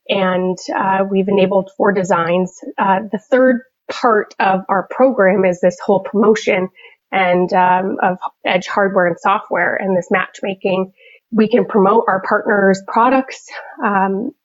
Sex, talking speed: female, 140 wpm